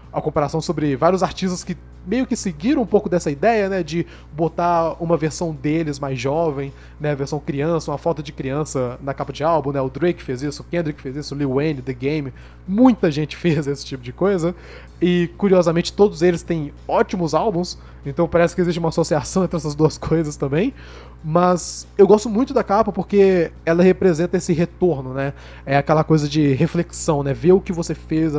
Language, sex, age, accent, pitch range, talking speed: Portuguese, male, 20-39, Brazilian, 140-175 Hz, 200 wpm